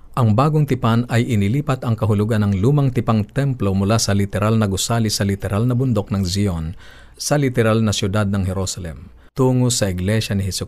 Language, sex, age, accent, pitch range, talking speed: Filipino, male, 50-69, native, 100-120 Hz, 185 wpm